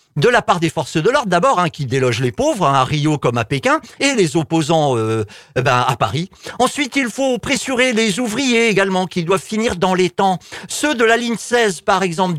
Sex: male